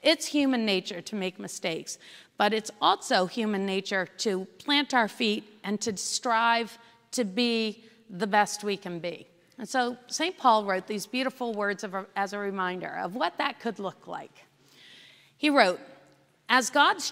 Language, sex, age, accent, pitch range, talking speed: English, female, 40-59, American, 200-280 Hz, 170 wpm